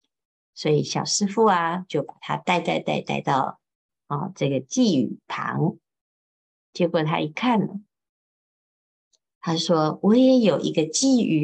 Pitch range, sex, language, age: 150-220 Hz, female, Chinese, 50-69